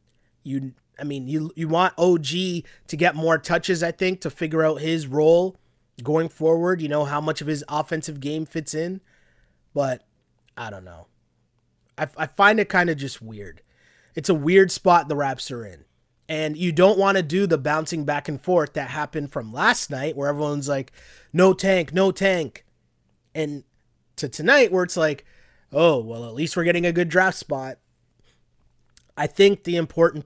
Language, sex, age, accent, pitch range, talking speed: English, male, 20-39, American, 140-175 Hz, 185 wpm